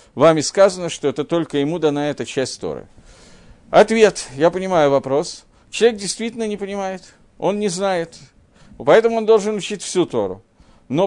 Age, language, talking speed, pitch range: 50-69, Russian, 155 wpm, 140-200 Hz